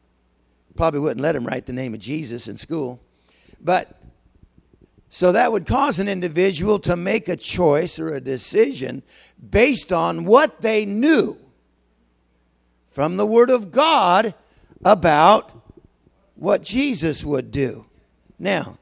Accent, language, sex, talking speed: American, English, male, 130 wpm